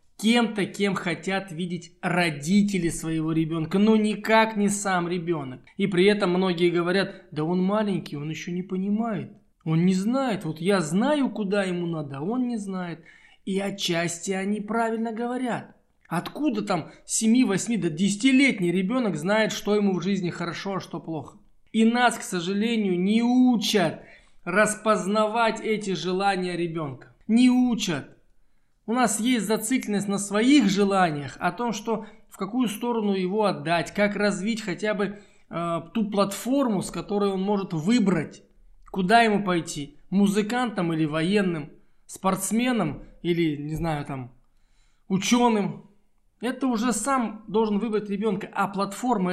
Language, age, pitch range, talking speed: Russian, 20-39, 180-220 Hz, 140 wpm